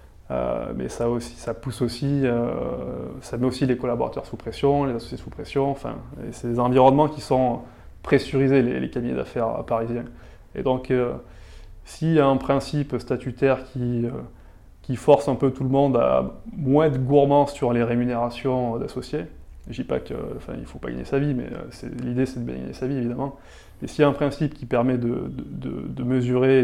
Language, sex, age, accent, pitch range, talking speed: French, male, 20-39, French, 115-135 Hz, 205 wpm